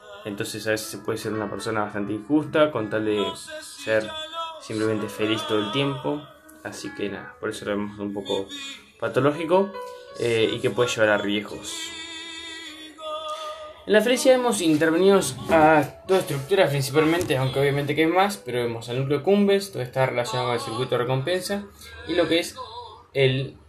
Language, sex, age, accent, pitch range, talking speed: Spanish, male, 10-29, Argentinian, 125-190 Hz, 170 wpm